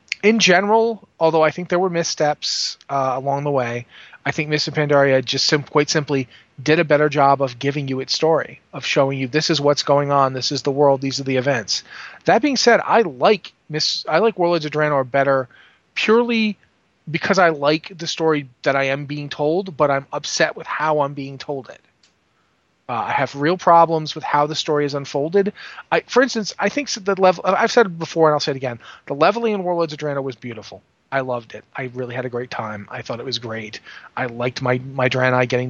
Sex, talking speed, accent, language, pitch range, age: male, 215 wpm, American, English, 125-155 Hz, 30-49